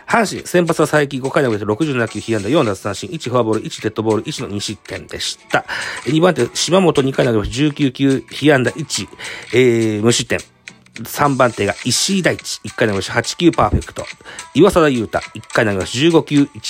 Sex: male